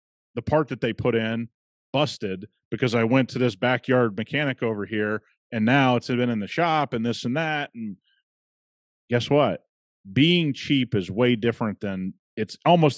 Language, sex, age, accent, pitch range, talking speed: English, male, 30-49, American, 110-150 Hz, 175 wpm